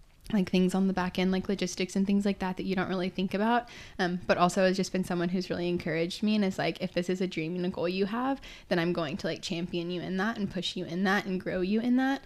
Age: 10-29